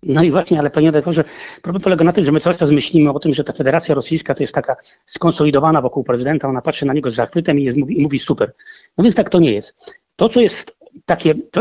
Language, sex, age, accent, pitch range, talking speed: Polish, male, 40-59, native, 150-185 Hz, 255 wpm